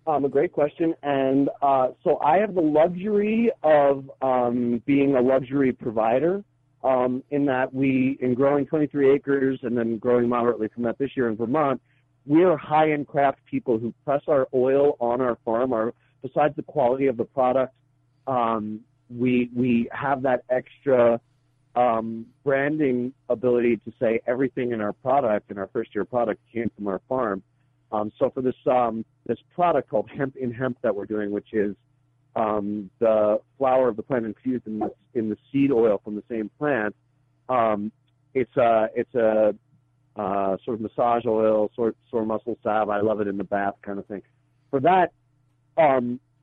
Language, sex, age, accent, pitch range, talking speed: English, male, 40-59, American, 115-135 Hz, 175 wpm